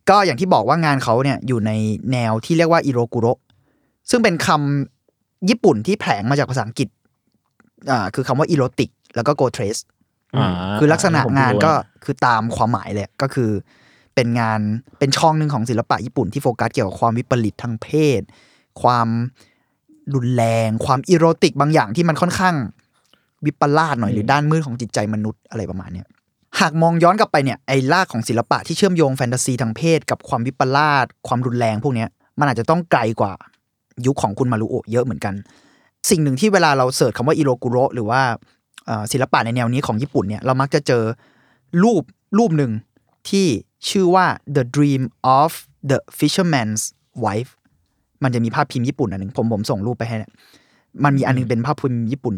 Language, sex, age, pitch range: Thai, male, 20-39, 115-155 Hz